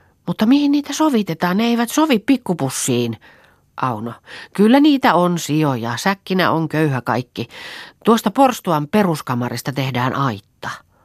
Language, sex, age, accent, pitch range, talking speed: Finnish, female, 40-59, native, 130-185 Hz, 120 wpm